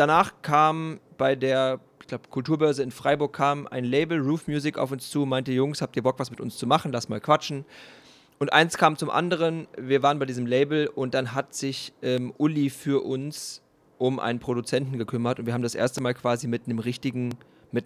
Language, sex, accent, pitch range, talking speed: German, male, German, 125-140 Hz, 210 wpm